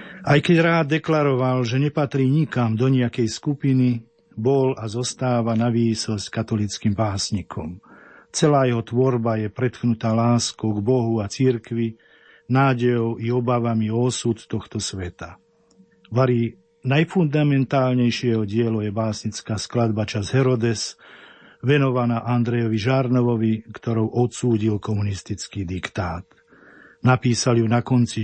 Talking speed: 115 wpm